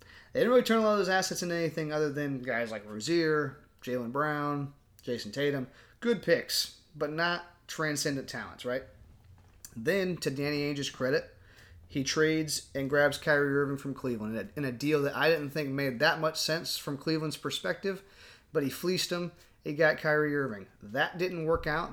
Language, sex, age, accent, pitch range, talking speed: English, male, 30-49, American, 130-160 Hz, 185 wpm